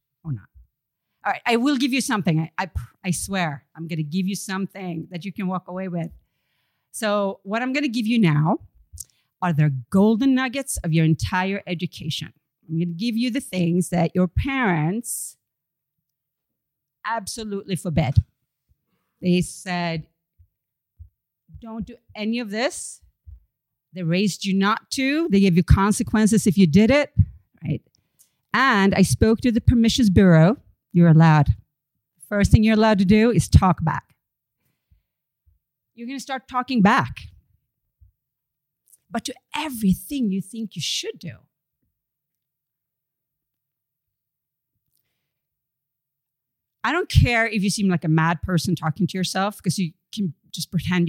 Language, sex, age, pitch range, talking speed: English, female, 40-59, 150-215 Hz, 140 wpm